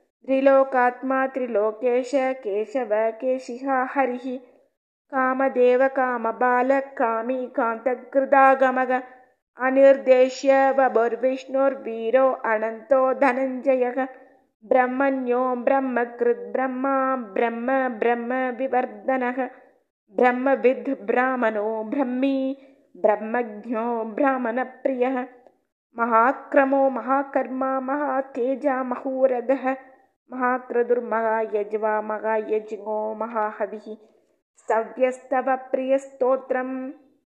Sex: female